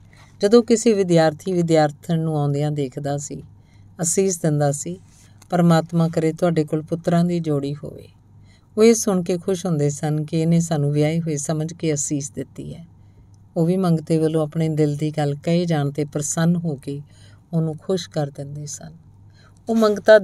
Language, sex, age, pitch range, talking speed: Punjabi, female, 50-69, 125-170 Hz, 170 wpm